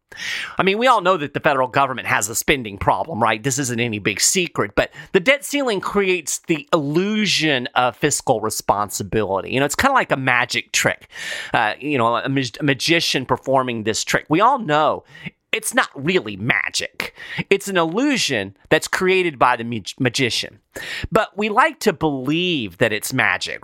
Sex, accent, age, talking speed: male, American, 40-59, 185 wpm